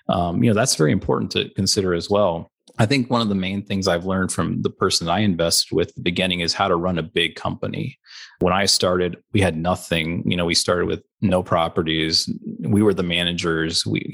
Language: English